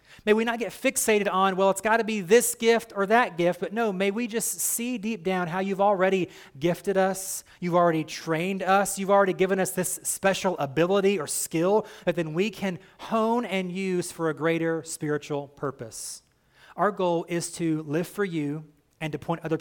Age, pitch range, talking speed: 30-49, 145-190 Hz, 200 wpm